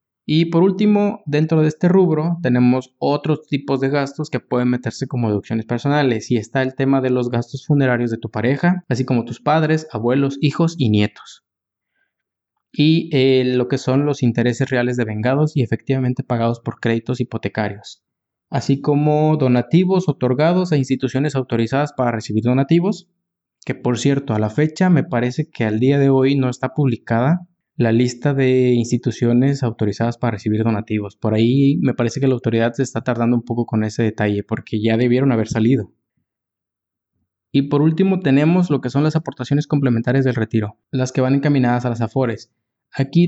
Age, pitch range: 20-39, 115-145 Hz